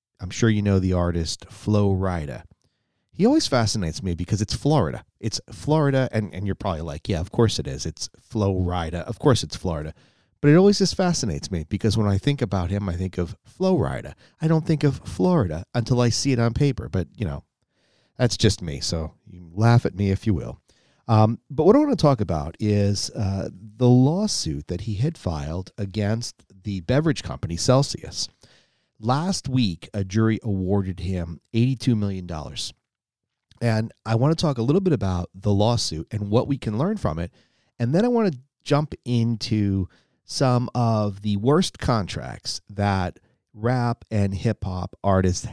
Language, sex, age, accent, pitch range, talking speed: English, male, 30-49, American, 95-125 Hz, 185 wpm